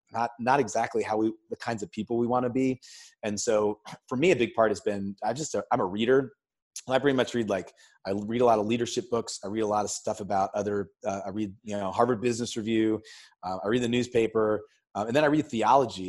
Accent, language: American, English